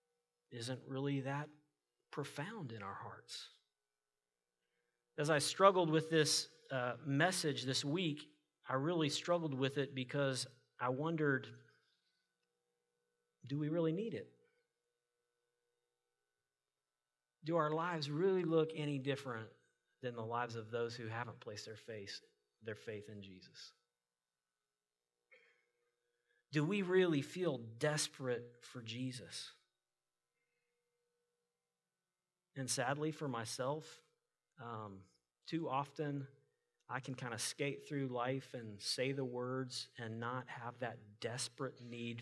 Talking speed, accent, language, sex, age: 115 wpm, American, English, male, 40-59